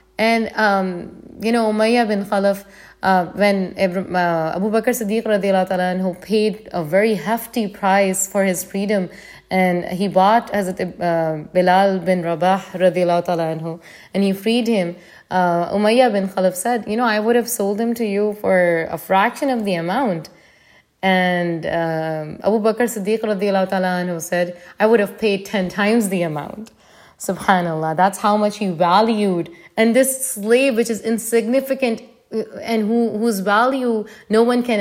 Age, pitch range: 20-39, 185-225 Hz